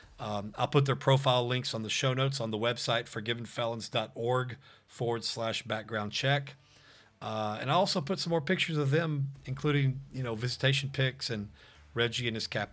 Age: 40-59